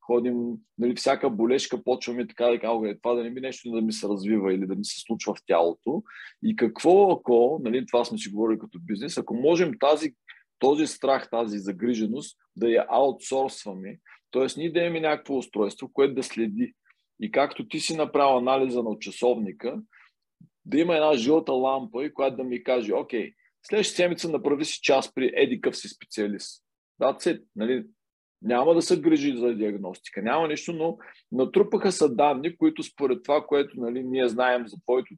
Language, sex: Bulgarian, male